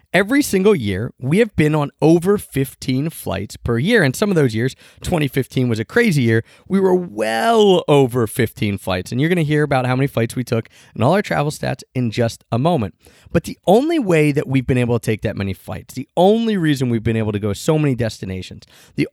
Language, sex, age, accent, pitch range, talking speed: English, male, 30-49, American, 115-175 Hz, 230 wpm